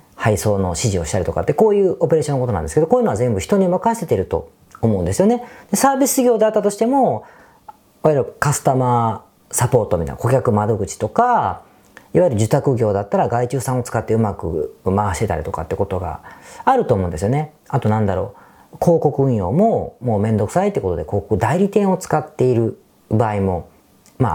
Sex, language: female, Japanese